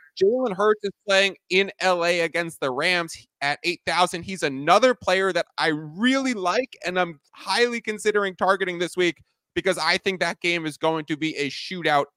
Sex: male